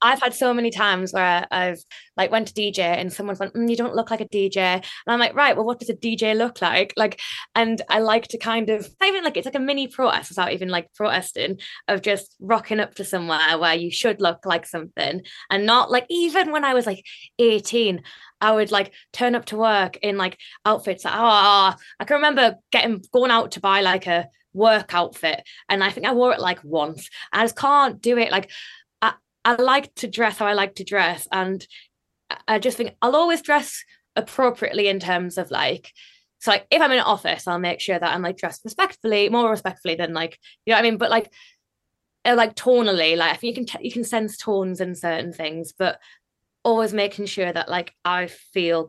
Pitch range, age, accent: 180-230 Hz, 20-39, British